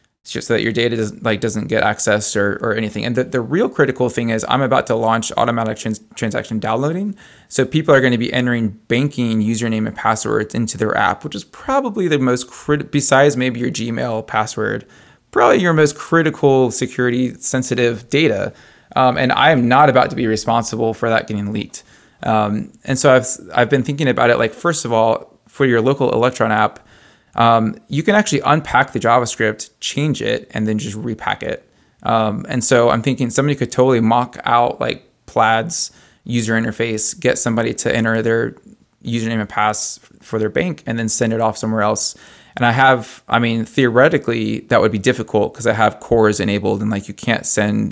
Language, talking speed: English, 200 wpm